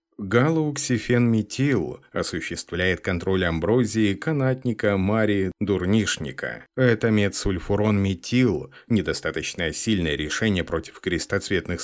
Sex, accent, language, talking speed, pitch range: male, native, Russian, 70 wpm, 95-130 Hz